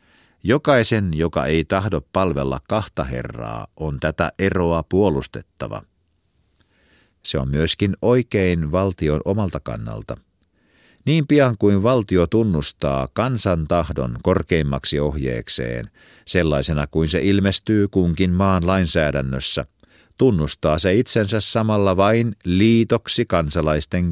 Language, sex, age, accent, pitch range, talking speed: Finnish, male, 50-69, native, 80-105 Hz, 100 wpm